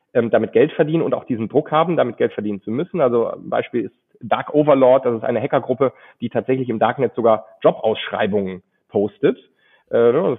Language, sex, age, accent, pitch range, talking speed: German, male, 40-59, German, 115-150 Hz, 175 wpm